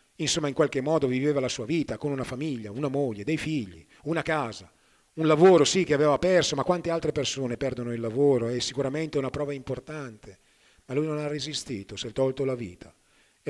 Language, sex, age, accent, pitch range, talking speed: Italian, male, 40-59, native, 135-165 Hz, 205 wpm